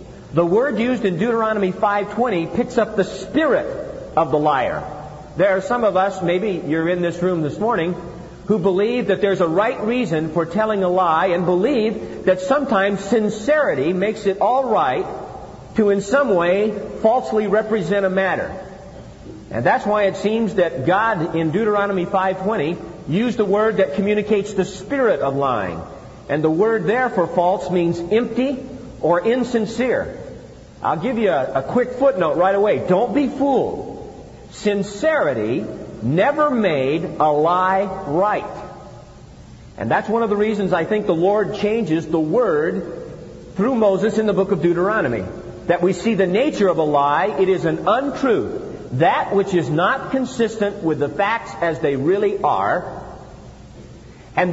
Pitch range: 180-230 Hz